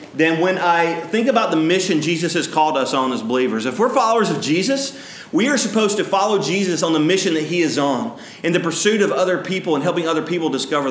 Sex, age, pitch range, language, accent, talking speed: male, 30-49, 150-200 Hz, English, American, 235 wpm